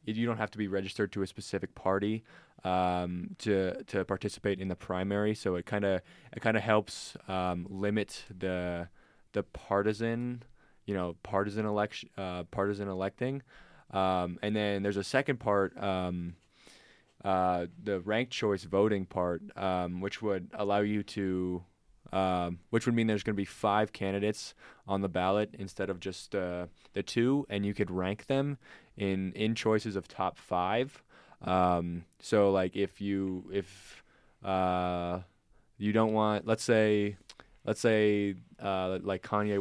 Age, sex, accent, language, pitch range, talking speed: 20-39, male, American, English, 90-105 Hz, 160 wpm